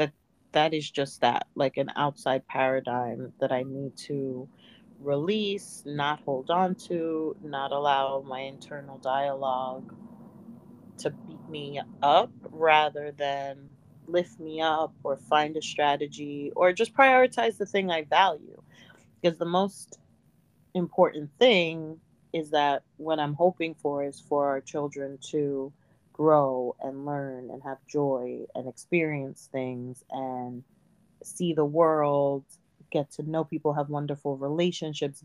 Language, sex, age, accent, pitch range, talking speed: English, female, 30-49, American, 140-165 Hz, 135 wpm